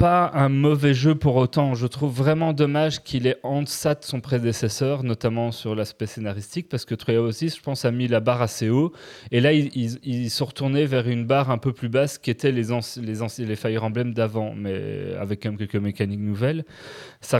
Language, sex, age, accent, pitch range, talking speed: French, male, 30-49, French, 105-135 Hz, 220 wpm